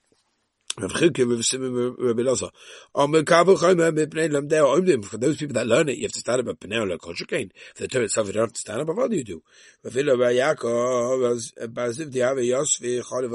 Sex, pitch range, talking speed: male, 120-165 Hz, 75 wpm